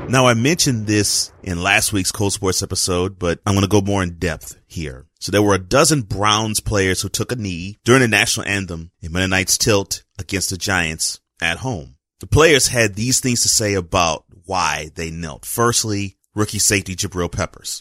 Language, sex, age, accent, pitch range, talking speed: English, male, 30-49, American, 90-110 Hz, 195 wpm